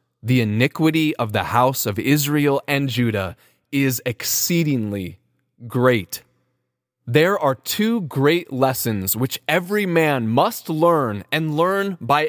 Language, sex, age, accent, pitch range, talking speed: English, male, 20-39, American, 125-175 Hz, 120 wpm